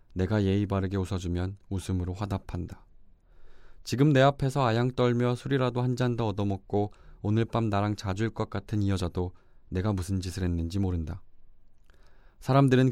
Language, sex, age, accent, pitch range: Korean, male, 20-39, native, 90-110 Hz